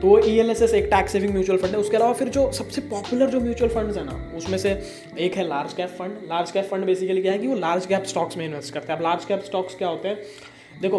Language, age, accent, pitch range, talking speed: Hindi, 20-39, native, 165-200 Hz, 260 wpm